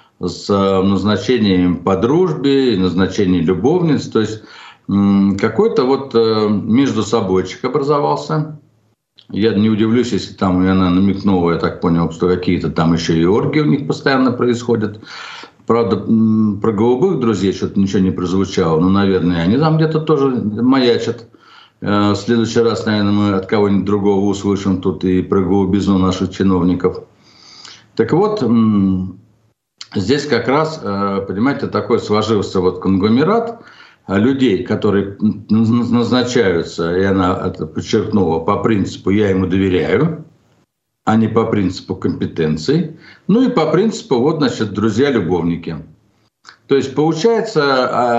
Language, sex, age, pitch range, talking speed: Russian, male, 60-79, 95-135 Hz, 125 wpm